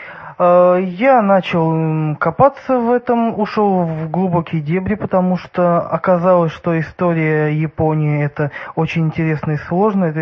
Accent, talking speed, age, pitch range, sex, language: native, 130 wpm, 20-39, 155-190 Hz, male, Russian